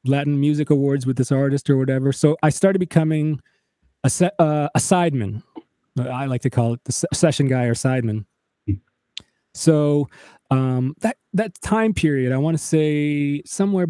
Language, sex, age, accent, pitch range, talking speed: English, male, 20-39, American, 120-150 Hz, 170 wpm